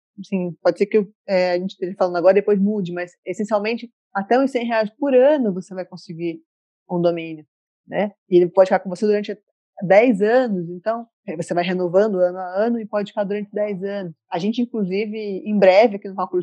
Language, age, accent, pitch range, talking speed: Portuguese, 20-39, Brazilian, 180-225 Hz, 210 wpm